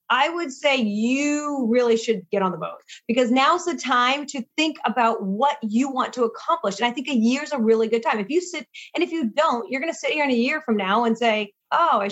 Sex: female